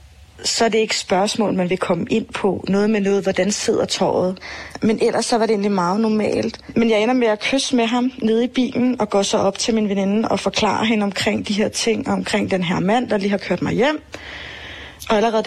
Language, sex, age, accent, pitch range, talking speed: Danish, female, 30-49, native, 195-230 Hz, 235 wpm